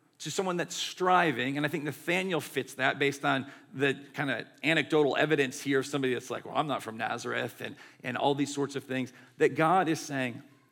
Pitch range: 130-150 Hz